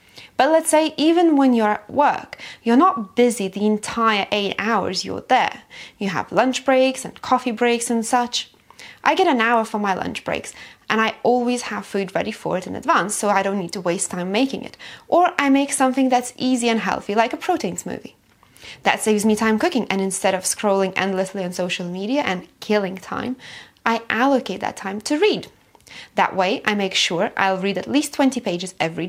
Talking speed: 205 wpm